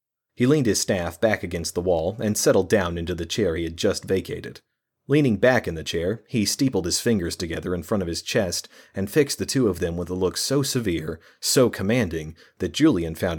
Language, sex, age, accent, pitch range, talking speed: English, male, 30-49, American, 85-115 Hz, 220 wpm